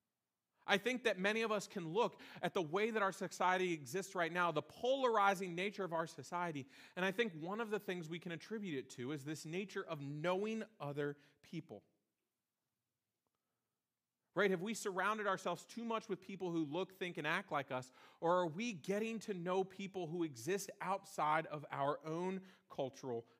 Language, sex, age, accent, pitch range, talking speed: English, male, 40-59, American, 140-190 Hz, 185 wpm